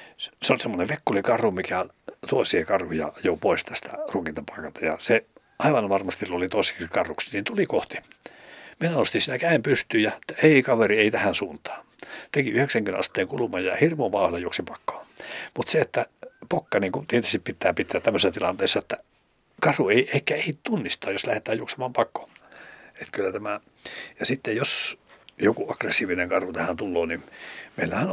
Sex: male